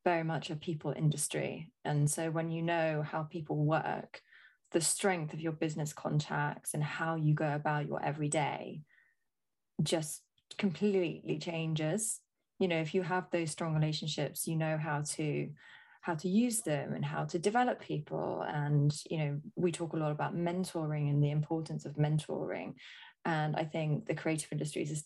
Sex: female